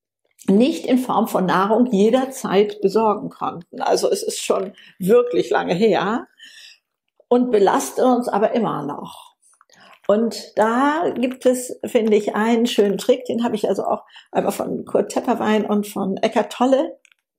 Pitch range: 195-255 Hz